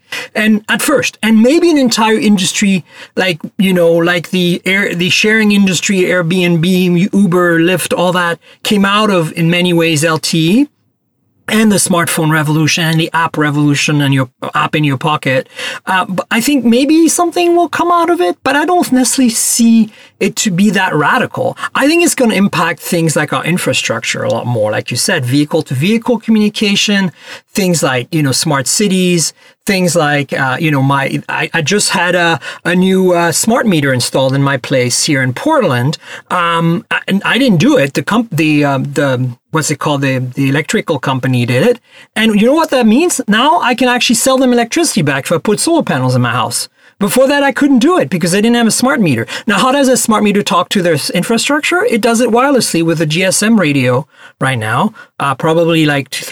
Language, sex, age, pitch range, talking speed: English, male, 40-59, 155-230 Hz, 205 wpm